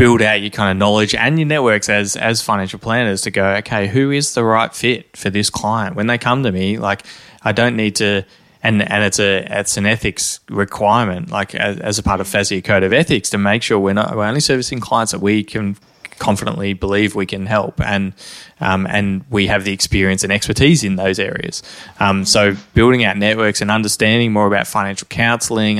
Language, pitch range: English, 100-115 Hz